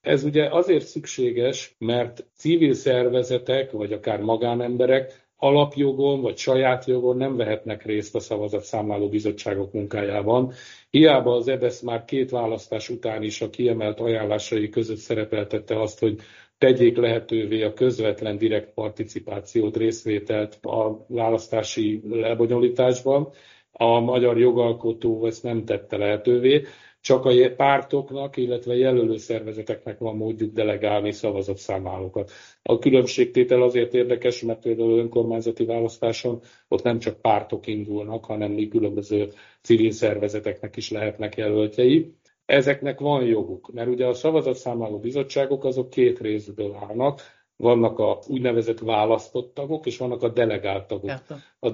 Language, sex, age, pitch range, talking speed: Hungarian, male, 50-69, 110-125 Hz, 125 wpm